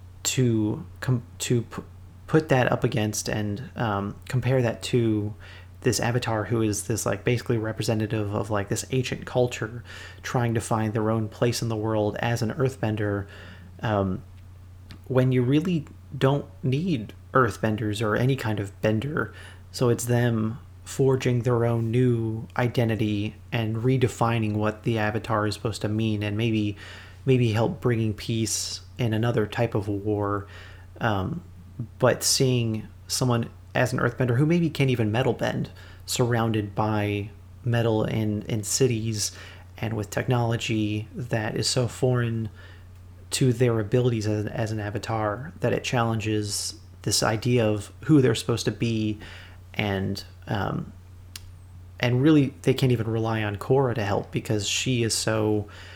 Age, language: 30-49, English